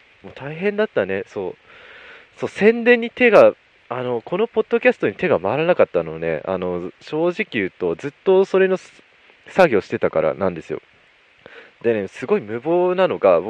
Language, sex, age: Japanese, male, 20-39